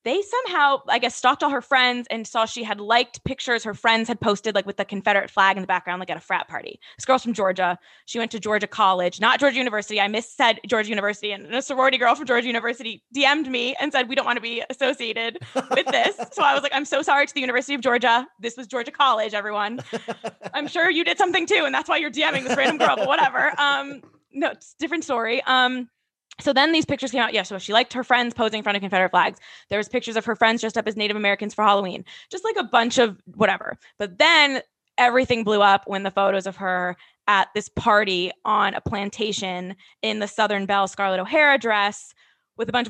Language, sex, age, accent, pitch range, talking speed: English, female, 20-39, American, 200-255 Hz, 240 wpm